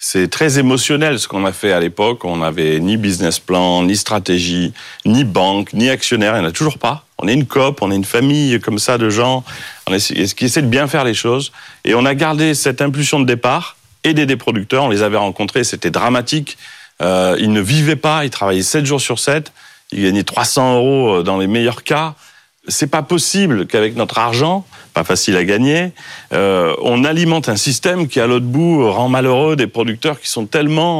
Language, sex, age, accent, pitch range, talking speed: French, male, 40-59, French, 105-155 Hz, 205 wpm